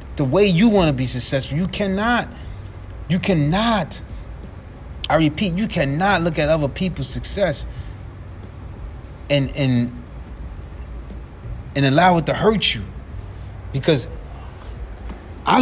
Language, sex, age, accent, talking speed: English, male, 30-49, American, 115 wpm